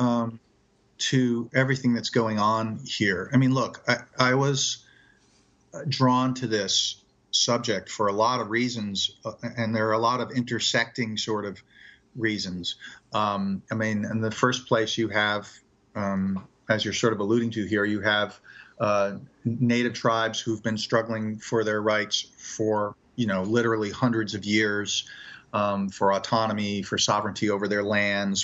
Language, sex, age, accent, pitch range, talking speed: English, male, 40-59, American, 105-120 Hz, 160 wpm